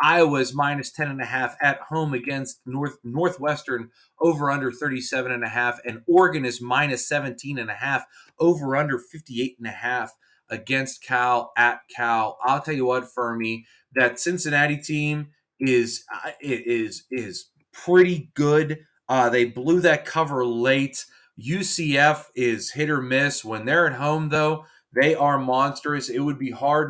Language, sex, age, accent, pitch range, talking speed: English, male, 30-49, American, 125-160 Hz, 130 wpm